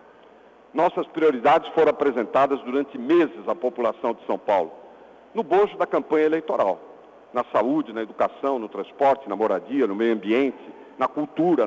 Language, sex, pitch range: Portuguese, male, 155-240 Hz